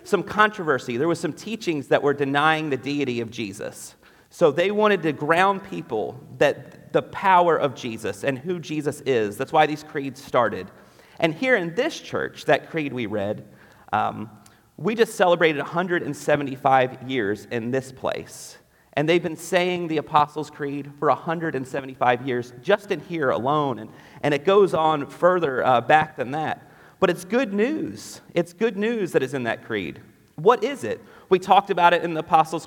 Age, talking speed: 40-59, 180 wpm